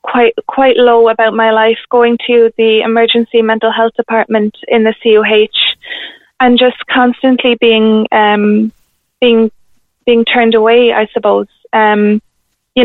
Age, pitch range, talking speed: 20-39, 225-250 Hz, 135 wpm